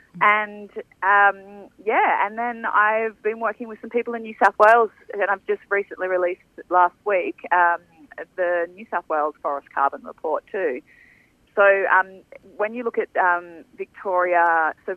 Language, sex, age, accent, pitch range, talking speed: English, female, 30-49, Australian, 160-210 Hz, 160 wpm